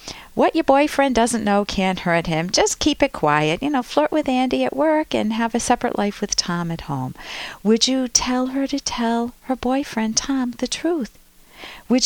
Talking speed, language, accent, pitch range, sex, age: 200 wpm, English, American, 175-275 Hz, female, 50-69